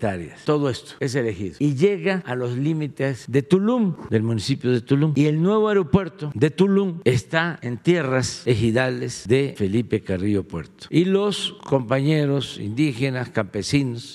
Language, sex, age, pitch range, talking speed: Spanish, male, 50-69, 115-150 Hz, 145 wpm